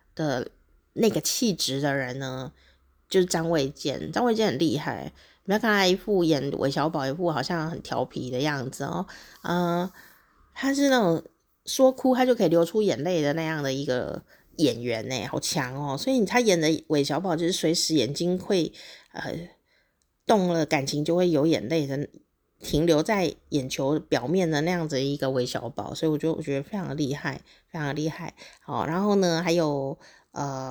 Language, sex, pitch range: Chinese, female, 145-185 Hz